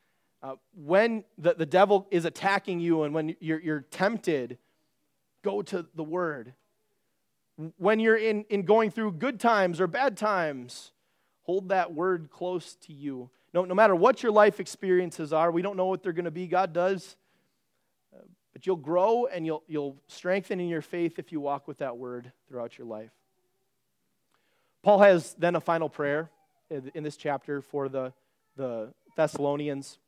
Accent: American